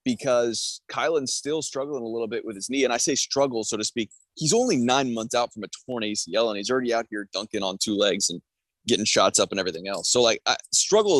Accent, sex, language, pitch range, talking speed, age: American, male, English, 105-130 Hz, 240 wpm, 20-39